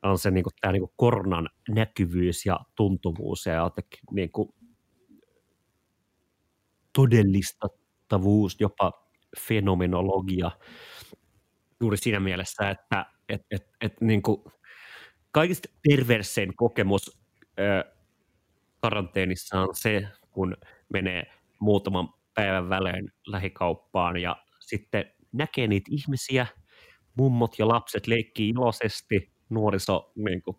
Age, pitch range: 30-49, 95-110 Hz